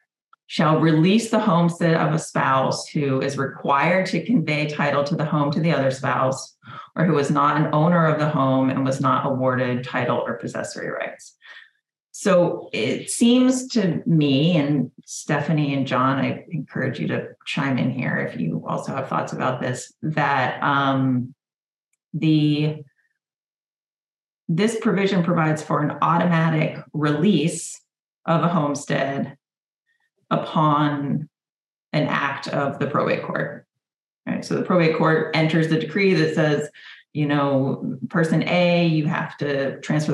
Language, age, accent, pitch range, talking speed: English, 30-49, American, 145-190 Hz, 145 wpm